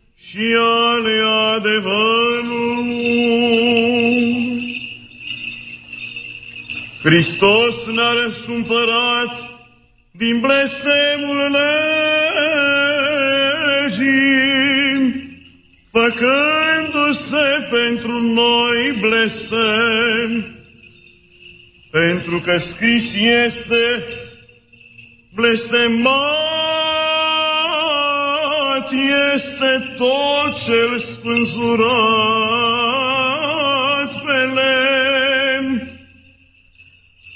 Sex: male